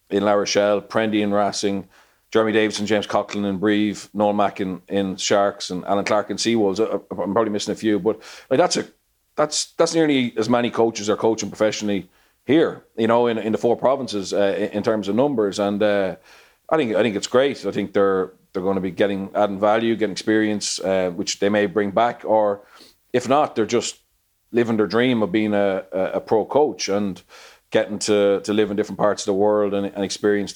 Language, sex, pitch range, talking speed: English, male, 100-110 Hz, 215 wpm